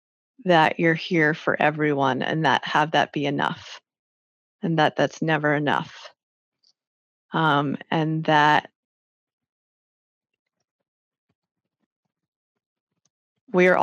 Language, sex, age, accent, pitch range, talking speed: English, female, 30-49, American, 150-180 Hz, 85 wpm